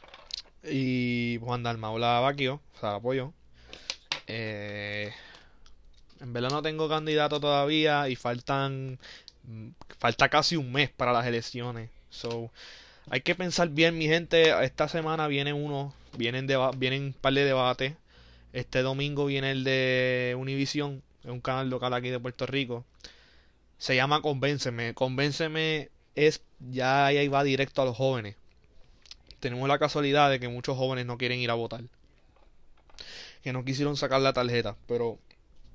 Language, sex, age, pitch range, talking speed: Spanish, male, 20-39, 120-145 Hz, 150 wpm